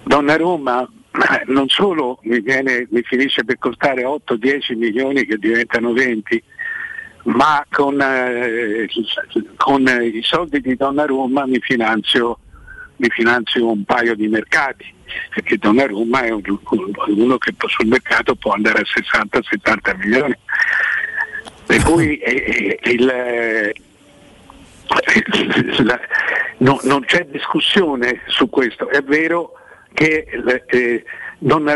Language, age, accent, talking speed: Italian, 60-79, native, 125 wpm